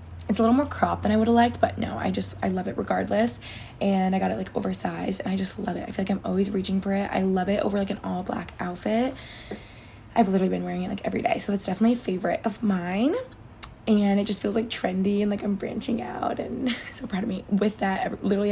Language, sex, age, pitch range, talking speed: English, female, 20-39, 185-220 Hz, 260 wpm